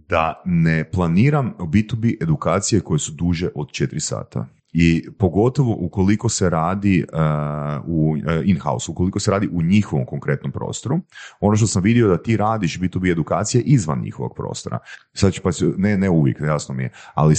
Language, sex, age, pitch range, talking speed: Croatian, male, 30-49, 75-105 Hz, 165 wpm